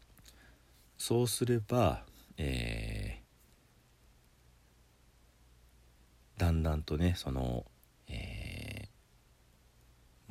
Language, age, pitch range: Japanese, 40-59, 65-95 Hz